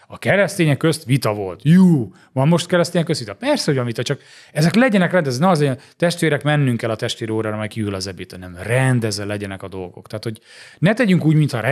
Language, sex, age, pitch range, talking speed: Hungarian, male, 30-49, 115-150 Hz, 210 wpm